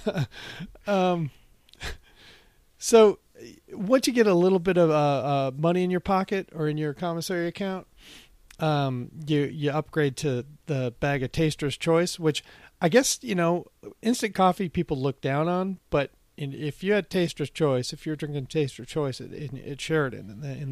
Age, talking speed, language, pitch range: 40-59, 160 wpm, English, 135-170 Hz